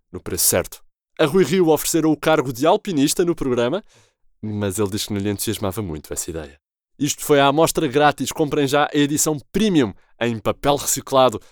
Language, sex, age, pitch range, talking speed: Portuguese, male, 20-39, 110-155 Hz, 190 wpm